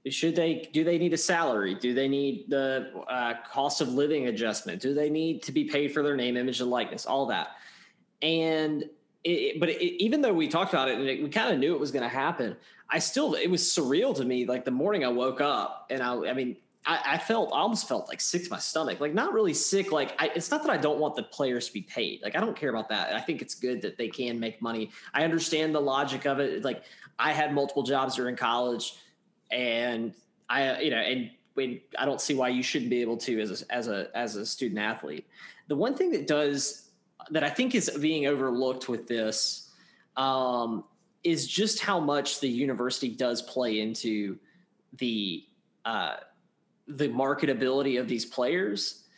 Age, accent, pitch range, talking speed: 20-39, American, 125-165 Hz, 215 wpm